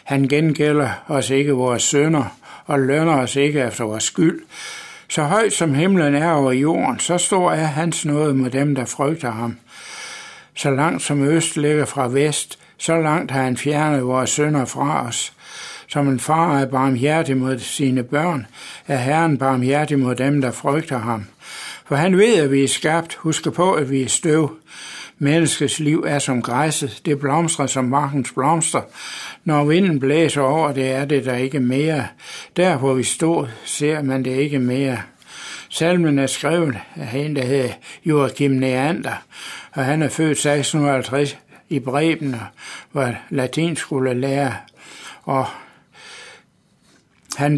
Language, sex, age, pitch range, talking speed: Danish, male, 60-79, 135-155 Hz, 160 wpm